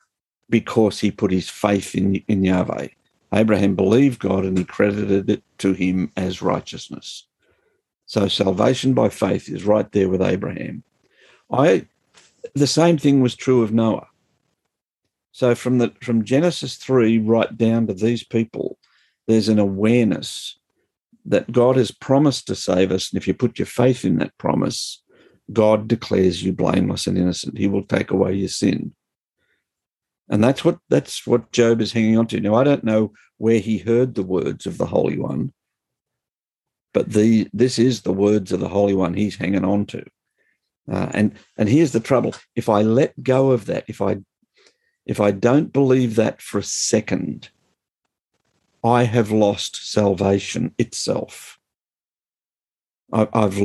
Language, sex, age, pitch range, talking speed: English, male, 50-69, 95-120 Hz, 160 wpm